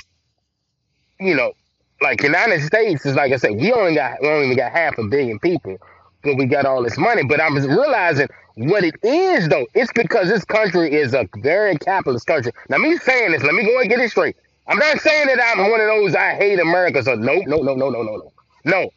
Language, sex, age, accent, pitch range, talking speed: English, male, 30-49, American, 140-215 Hz, 230 wpm